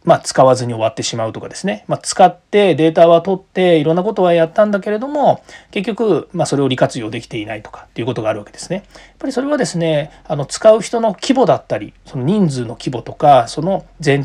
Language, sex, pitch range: Japanese, male, 140-210 Hz